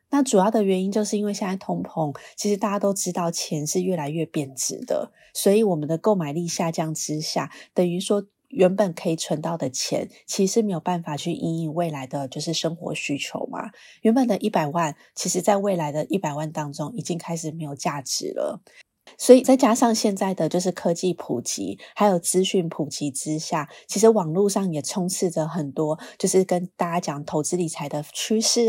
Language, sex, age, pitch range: Chinese, female, 20-39, 160-200 Hz